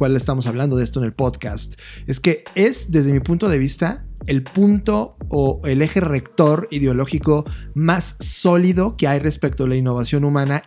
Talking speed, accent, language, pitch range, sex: 180 wpm, Mexican, Spanish, 135-175 Hz, male